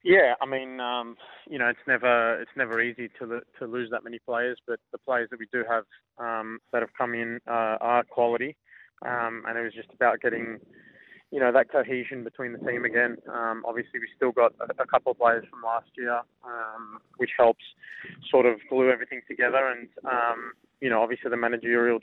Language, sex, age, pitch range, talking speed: English, male, 20-39, 115-130 Hz, 205 wpm